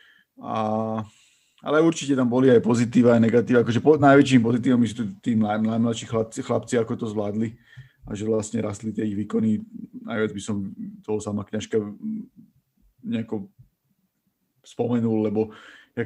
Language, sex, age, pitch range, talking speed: Slovak, male, 30-49, 105-120 Hz, 140 wpm